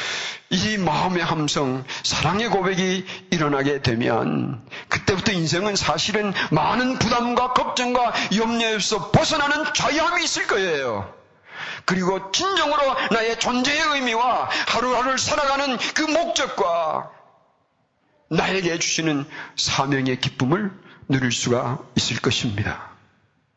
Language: Korean